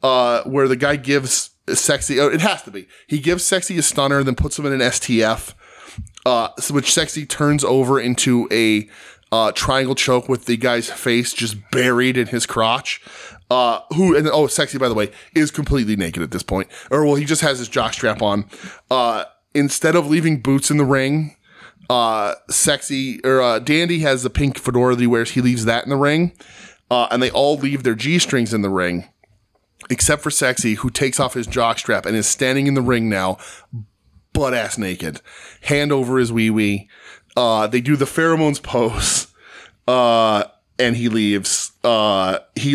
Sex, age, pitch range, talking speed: male, 20-39, 110-145 Hz, 185 wpm